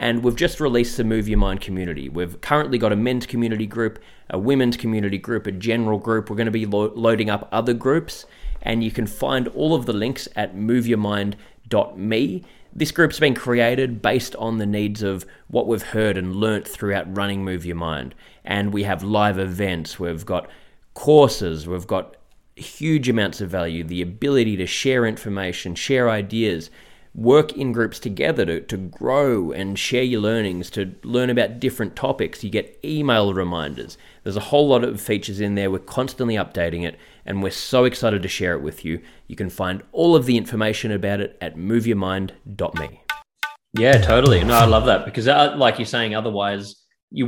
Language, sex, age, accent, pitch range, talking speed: English, male, 30-49, Australian, 95-120 Hz, 185 wpm